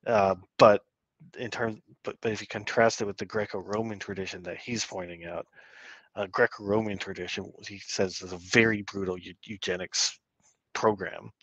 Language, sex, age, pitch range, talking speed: English, male, 30-49, 90-105 Hz, 160 wpm